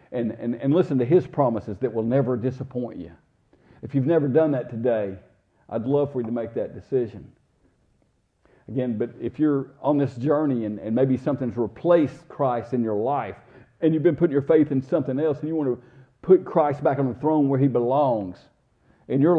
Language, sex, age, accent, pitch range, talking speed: English, male, 50-69, American, 110-145 Hz, 205 wpm